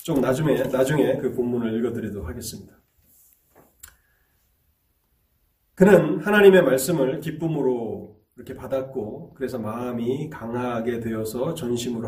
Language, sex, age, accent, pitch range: Korean, male, 30-49, native, 100-160 Hz